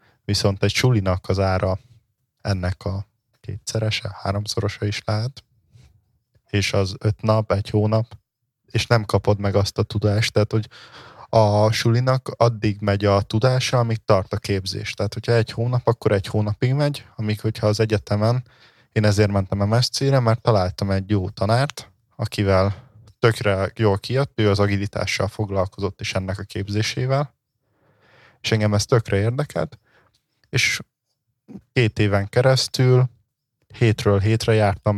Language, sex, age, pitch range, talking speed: Hungarian, male, 20-39, 100-120 Hz, 140 wpm